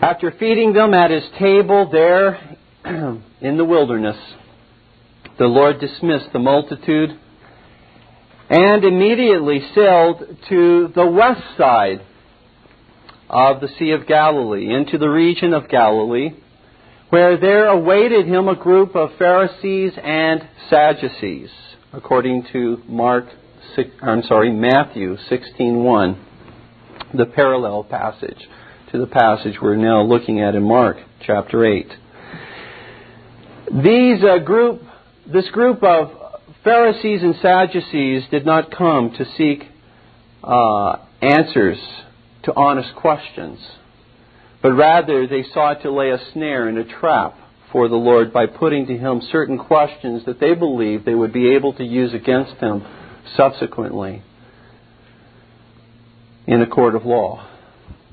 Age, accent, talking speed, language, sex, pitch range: 50-69, American, 125 wpm, English, male, 120-170 Hz